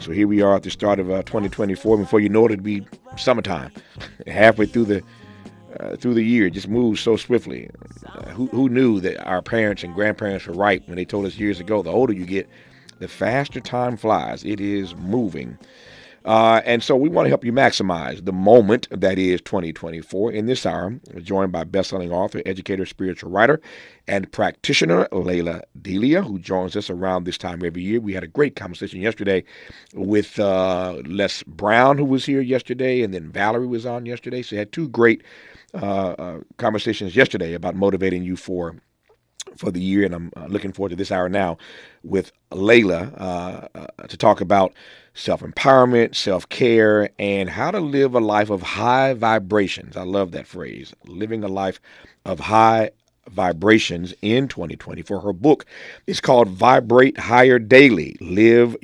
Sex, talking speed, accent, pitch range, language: male, 180 wpm, American, 95-115 Hz, English